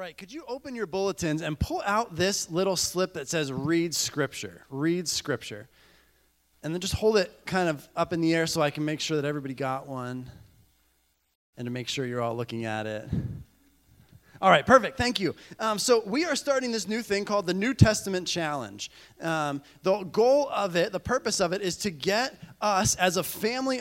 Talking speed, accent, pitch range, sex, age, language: 205 wpm, American, 150-205 Hz, male, 20-39, English